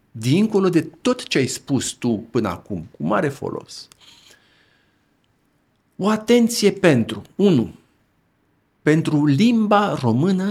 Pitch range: 110-155 Hz